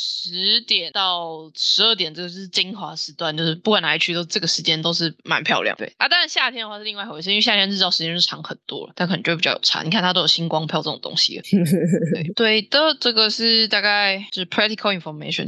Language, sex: Chinese, female